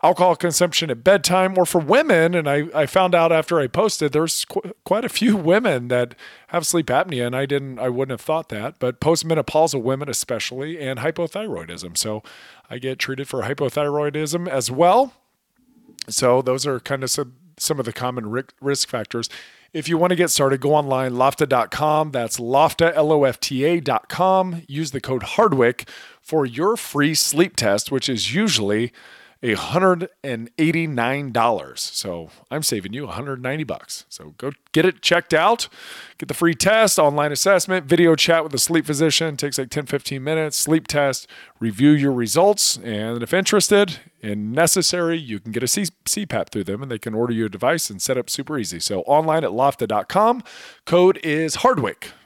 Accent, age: American, 40-59